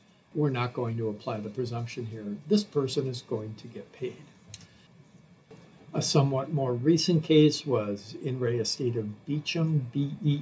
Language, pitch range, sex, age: English, 125-160 Hz, male, 60-79